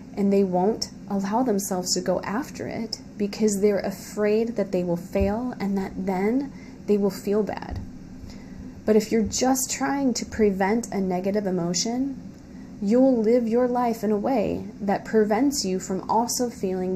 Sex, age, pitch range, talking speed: female, 20-39, 190-225 Hz, 165 wpm